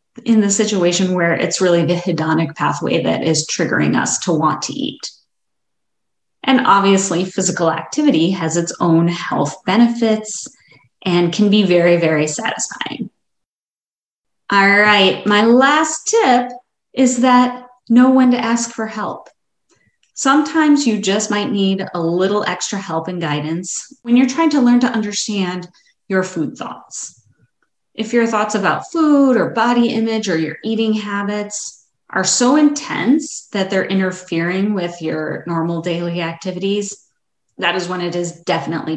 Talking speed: 145 wpm